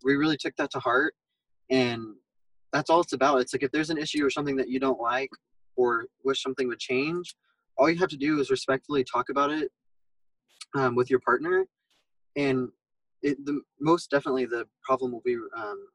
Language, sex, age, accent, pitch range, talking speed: English, male, 20-39, American, 125-165 Hz, 195 wpm